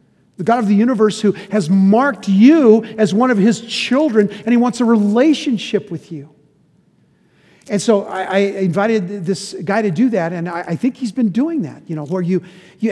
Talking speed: 205 wpm